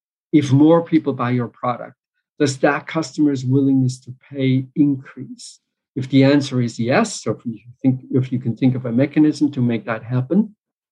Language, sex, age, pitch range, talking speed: English, male, 50-69, 125-150 Hz, 170 wpm